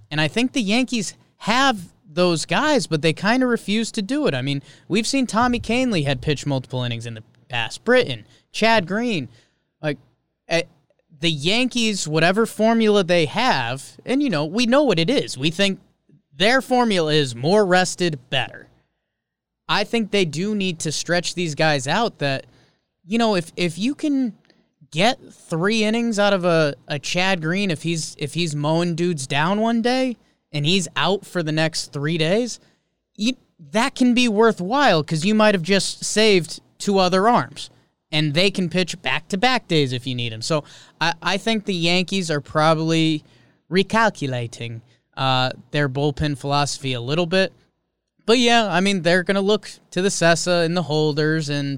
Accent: American